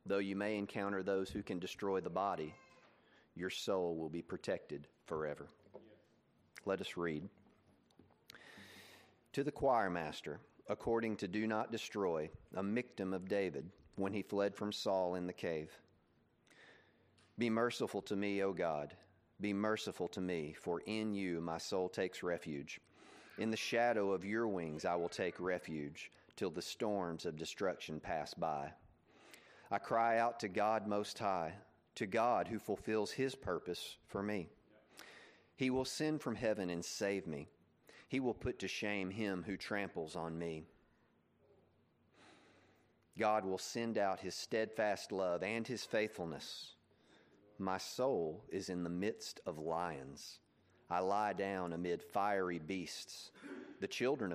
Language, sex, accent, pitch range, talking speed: English, male, American, 85-110 Hz, 145 wpm